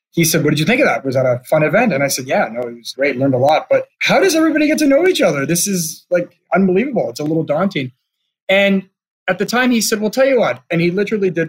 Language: English